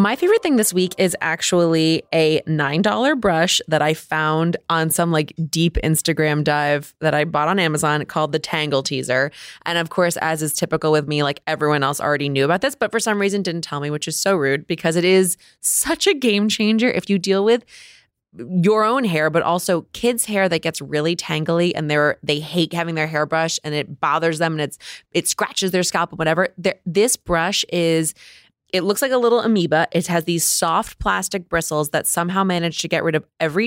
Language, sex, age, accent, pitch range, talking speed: English, female, 20-39, American, 150-175 Hz, 215 wpm